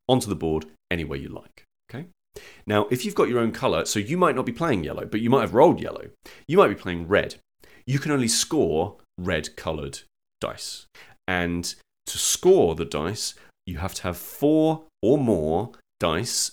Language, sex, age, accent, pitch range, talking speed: English, male, 30-49, British, 80-100 Hz, 190 wpm